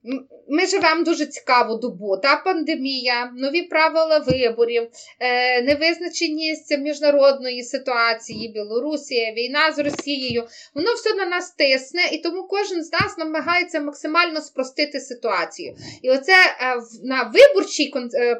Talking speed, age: 115 wpm, 20-39